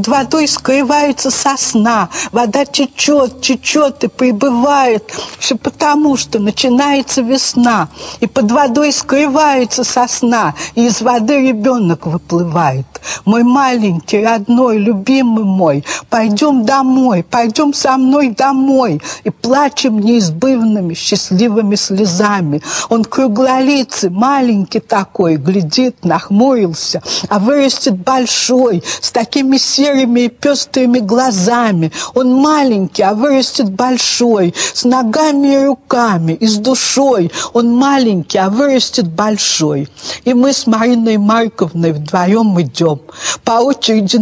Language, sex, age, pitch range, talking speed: Russian, female, 50-69, 205-265 Hz, 110 wpm